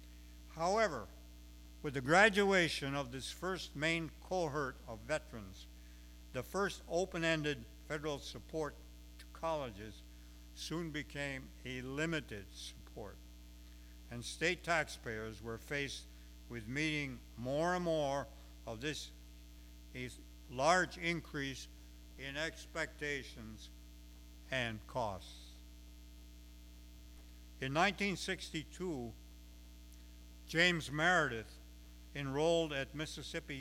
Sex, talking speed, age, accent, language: male, 85 wpm, 60-79, American, English